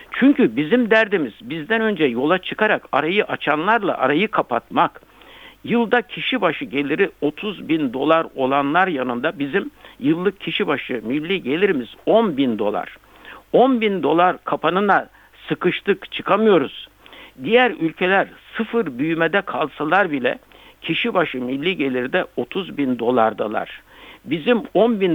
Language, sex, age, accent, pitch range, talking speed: Turkish, male, 60-79, native, 150-230 Hz, 120 wpm